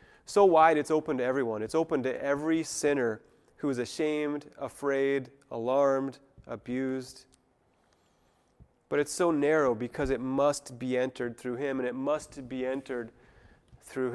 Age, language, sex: 30-49, English, male